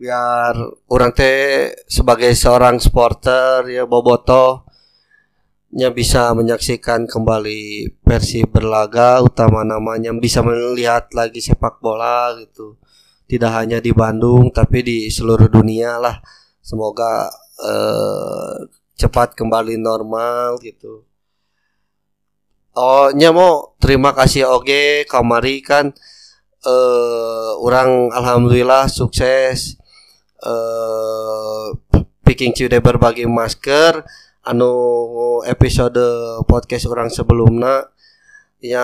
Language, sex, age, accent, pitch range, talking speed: Indonesian, male, 20-39, native, 115-130 Hz, 95 wpm